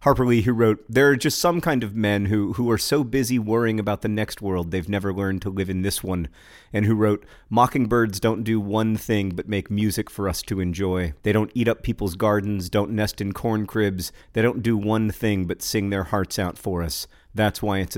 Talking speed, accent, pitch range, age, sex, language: 235 wpm, American, 95-110 Hz, 40-59, male, English